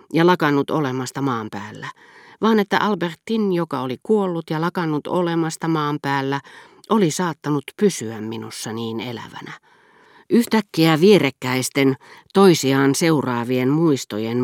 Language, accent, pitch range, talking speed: Finnish, native, 130-170 Hz, 110 wpm